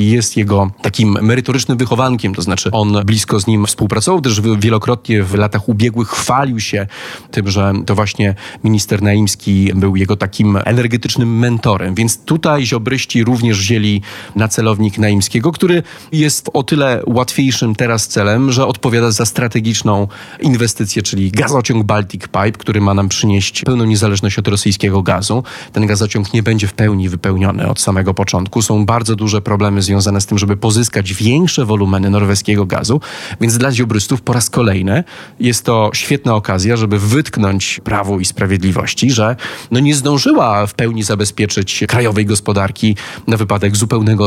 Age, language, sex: 30-49, Polish, male